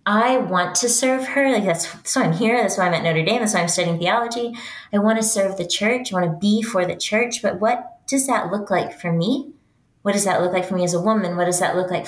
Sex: female